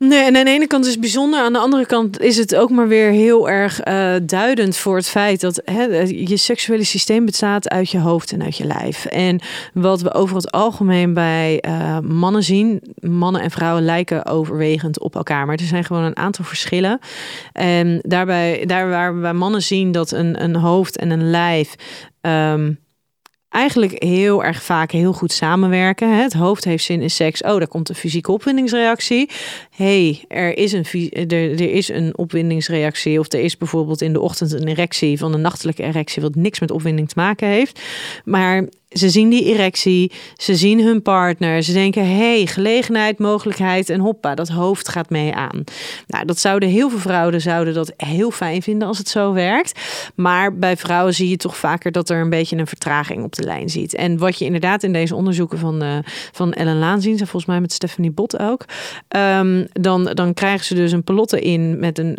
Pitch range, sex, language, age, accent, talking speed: 170-205 Hz, female, Dutch, 30-49, Dutch, 200 wpm